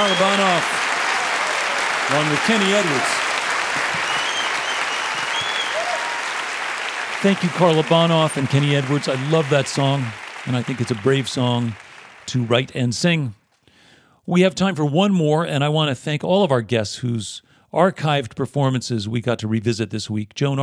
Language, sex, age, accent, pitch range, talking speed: English, male, 40-59, American, 120-150 Hz, 150 wpm